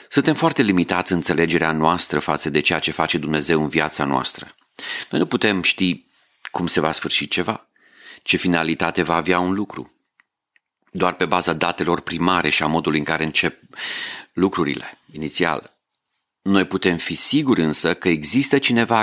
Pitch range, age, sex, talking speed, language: 80-100 Hz, 40-59, male, 160 wpm, Romanian